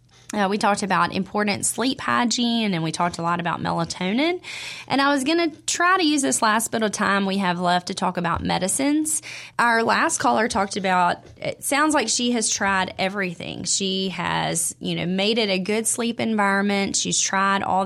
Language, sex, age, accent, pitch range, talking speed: English, female, 20-39, American, 180-215 Hz, 195 wpm